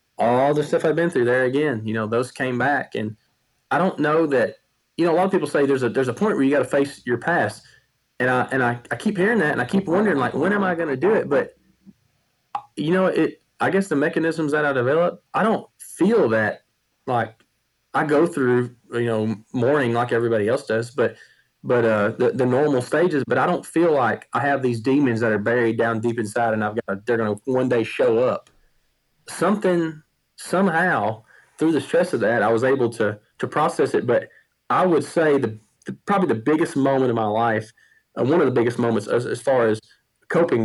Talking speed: 225 wpm